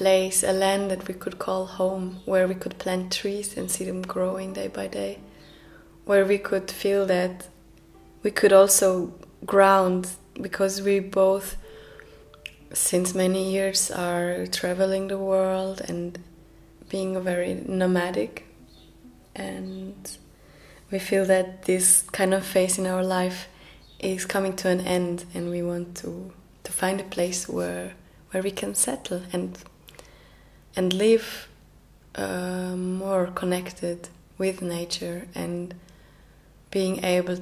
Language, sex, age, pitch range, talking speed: English, female, 20-39, 180-195 Hz, 135 wpm